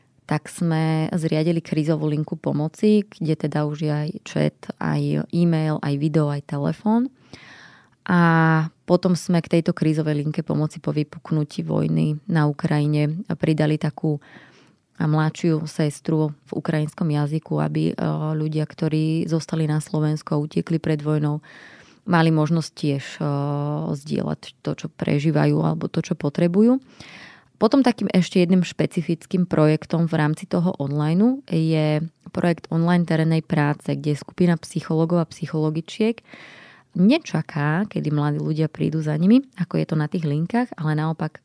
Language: Slovak